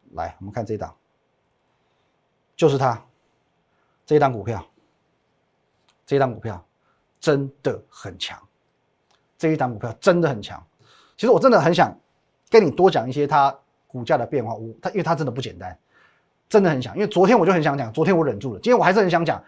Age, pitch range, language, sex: 30-49, 125-185 Hz, Chinese, male